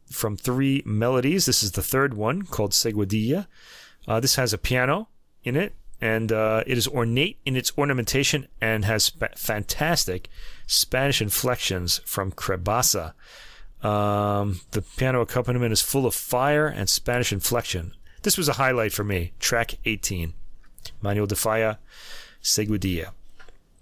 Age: 30-49